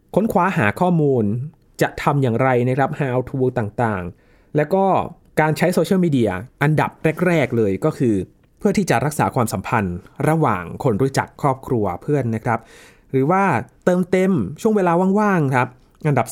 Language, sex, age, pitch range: Thai, male, 20-39, 115-155 Hz